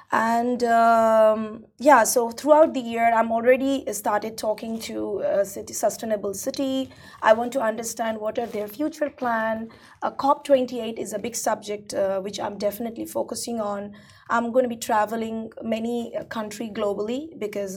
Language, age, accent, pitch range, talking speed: English, 20-39, Indian, 205-250 Hz, 150 wpm